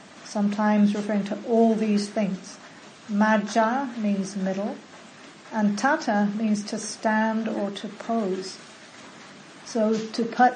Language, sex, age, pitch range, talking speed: English, female, 60-79, 205-230 Hz, 115 wpm